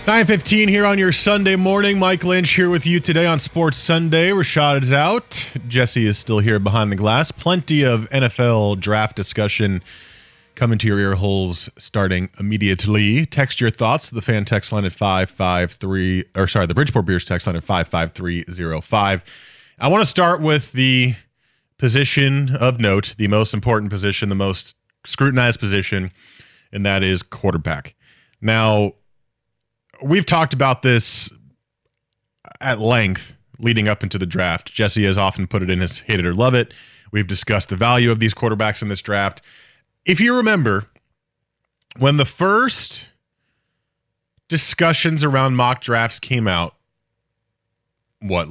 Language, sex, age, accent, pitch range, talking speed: English, male, 30-49, American, 100-140 Hz, 150 wpm